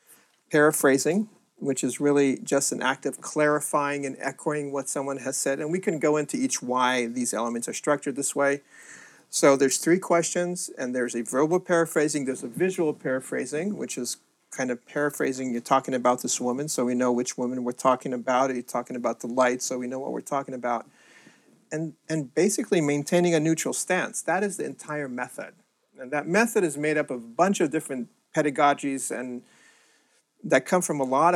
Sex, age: male, 40-59